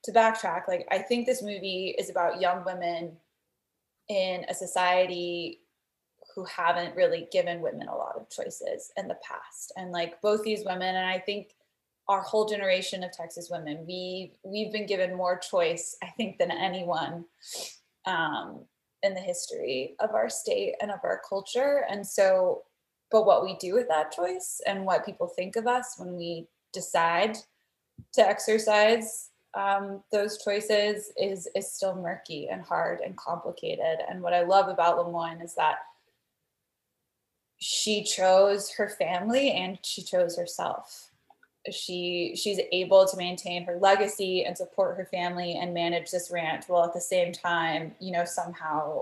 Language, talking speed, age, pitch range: English, 160 wpm, 20-39, 175-210 Hz